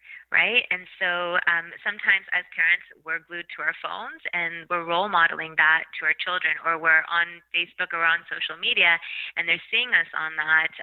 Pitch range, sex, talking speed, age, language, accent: 170-210 Hz, female, 190 wpm, 20-39, English, American